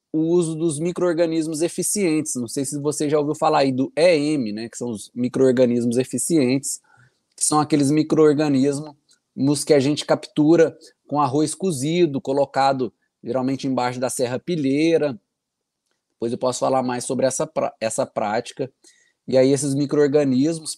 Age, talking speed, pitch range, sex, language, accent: 20-39, 145 wpm, 125-155 Hz, male, Portuguese, Brazilian